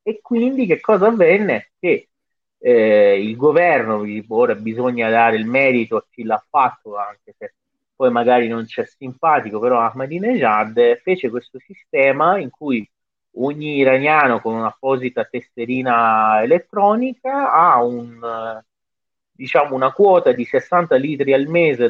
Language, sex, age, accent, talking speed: Italian, male, 30-49, native, 130 wpm